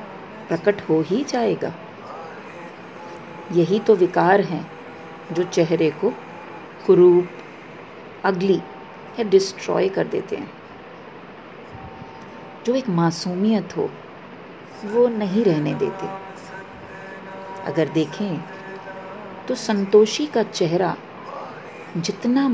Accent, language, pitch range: Indian, English, 170-215 Hz